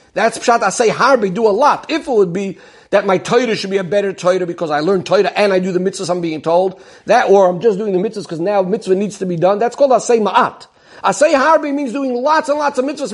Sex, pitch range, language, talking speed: male, 200-265 Hz, English, 270 wpm